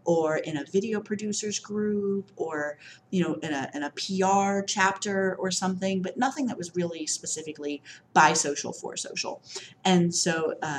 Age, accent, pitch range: 30-49, American, 150-185 Hz